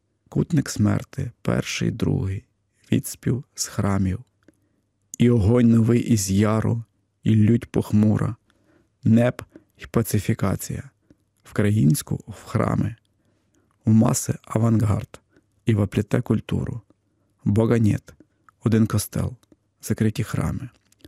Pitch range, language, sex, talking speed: 100-115 Hz, Russian, male, 90 wpm